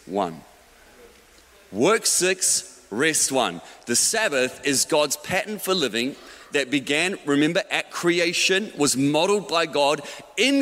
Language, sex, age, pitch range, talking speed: English, male, 30-49, 120-165 Hz, 125 wpm